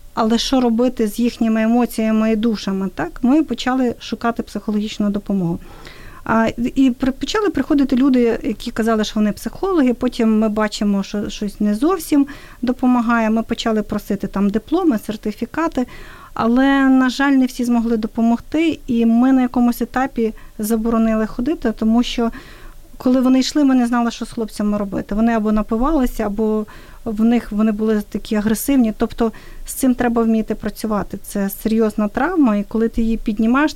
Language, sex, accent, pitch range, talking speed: Ukrainian, female, native, 220-255 Hz, 150 wpm